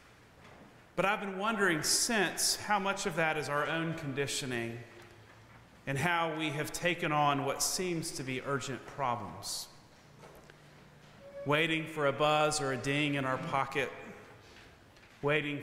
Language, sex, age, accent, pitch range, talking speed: English, male, 40-59, American, 135-170 Hz, 140 wpm